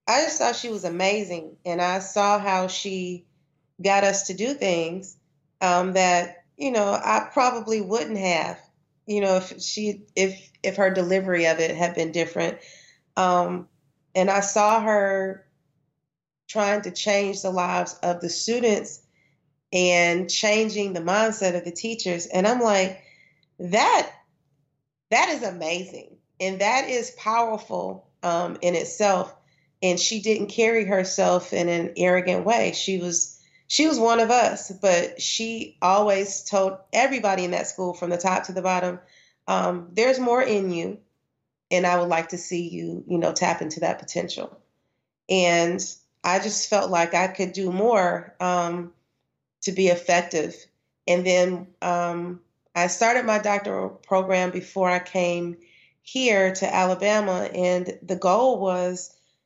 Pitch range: 175-200 Hz